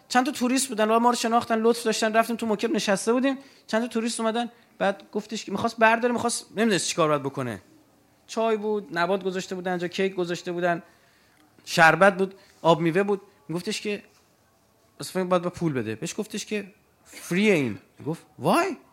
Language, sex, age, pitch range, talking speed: Persian, male, 30-49, 160-255 Hz, 180 wpm